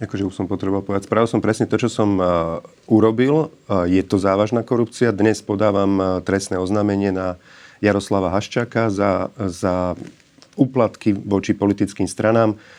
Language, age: Slovak, 40-59